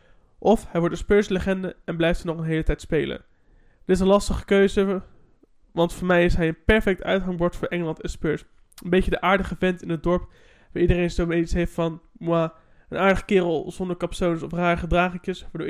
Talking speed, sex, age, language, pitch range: 210 wpm, male, 20-39, Dutch, 165-185 Hz